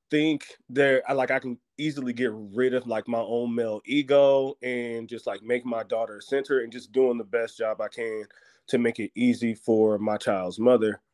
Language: English